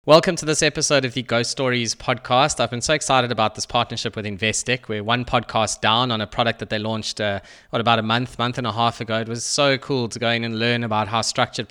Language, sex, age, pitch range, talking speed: English, male, 20-39, 115-135 Hz, 255 wpm